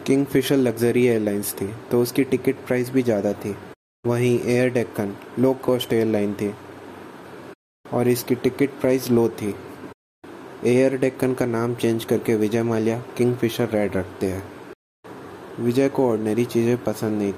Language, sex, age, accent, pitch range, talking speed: Hindi, male, 20-39, native, 110-125 Hz, 145 wpm